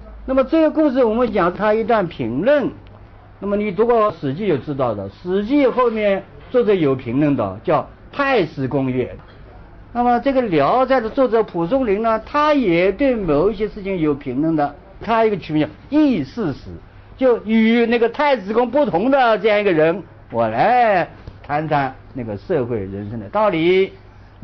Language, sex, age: Chinese, male, 50-69